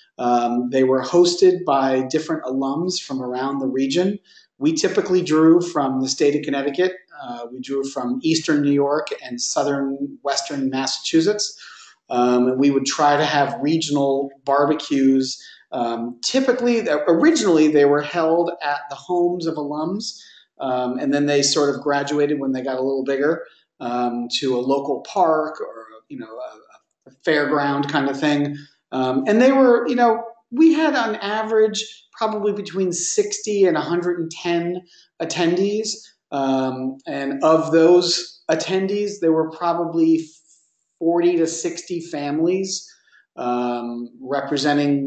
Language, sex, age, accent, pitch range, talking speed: English, male, 40-59, American, 135-175 Hz, 140 wpm